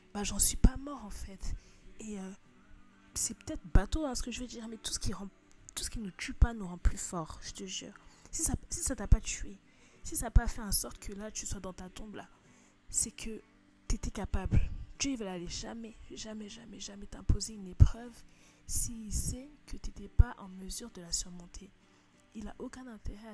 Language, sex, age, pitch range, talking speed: French, female, 20-39, 185-225 Hz, 225 wpm